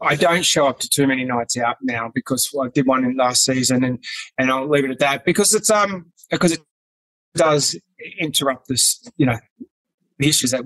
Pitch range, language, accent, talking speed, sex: 135-175 Hz, English, Australian, 215 wpm, male